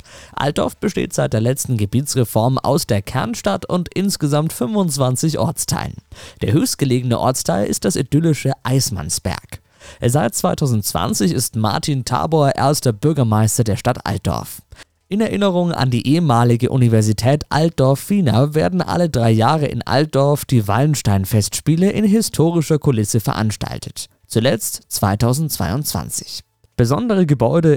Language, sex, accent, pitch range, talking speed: German, male, German, 110-155 Hz, 115 wpm